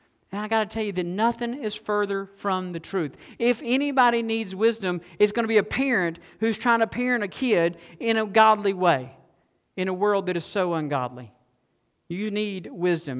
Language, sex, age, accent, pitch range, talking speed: English, male, 50-69, American, 165-200 Hz, 195 wpm